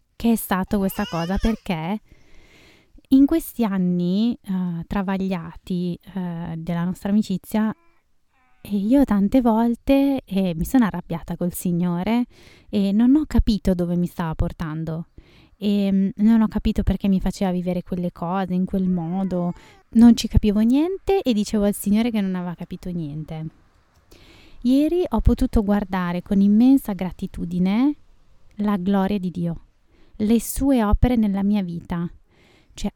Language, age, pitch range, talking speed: Italian, 20-39, 180-230 Hz, 140 wpm